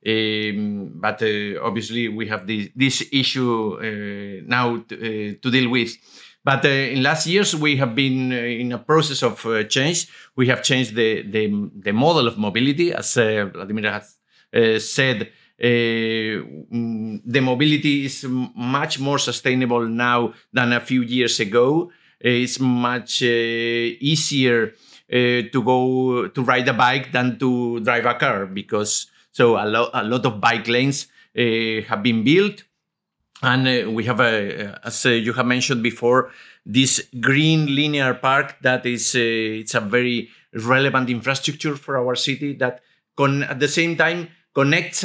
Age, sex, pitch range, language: 50-69, male, 115-140 Hz, English